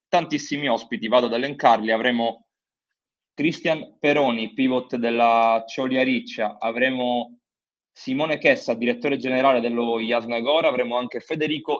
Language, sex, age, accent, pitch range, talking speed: Italian, male, 20-39, native, 115-150 Hz, 110 wpm